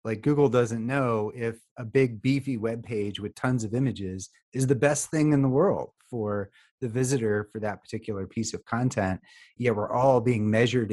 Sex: male